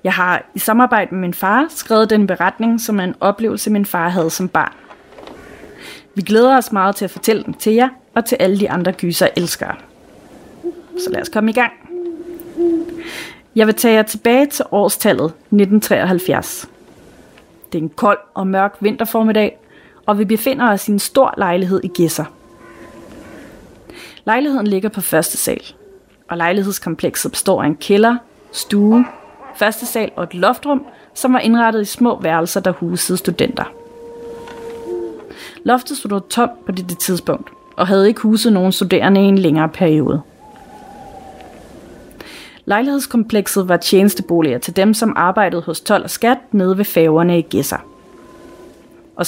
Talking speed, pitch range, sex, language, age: 155 wpm, 185-235 Hz, female, Danish, 30-49